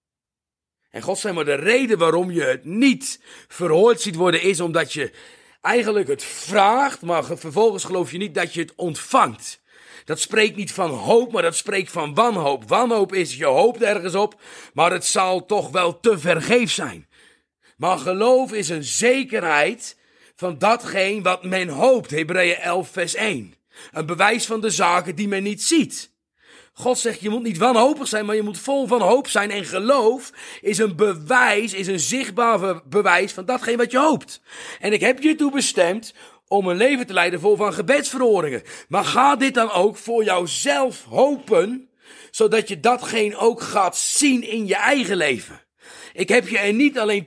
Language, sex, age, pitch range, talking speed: English, male, 40-59, 185-245 Hz, 180 wpm